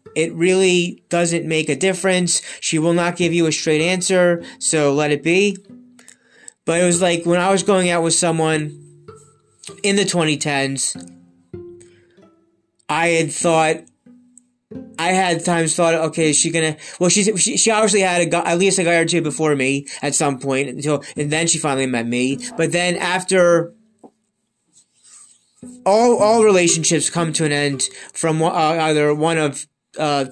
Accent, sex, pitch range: American, male, 150-180 Hz